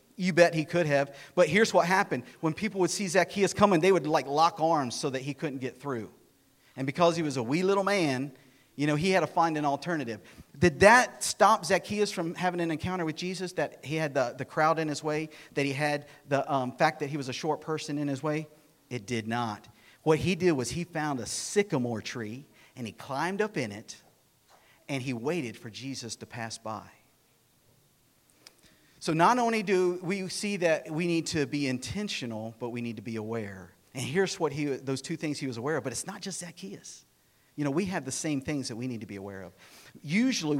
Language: English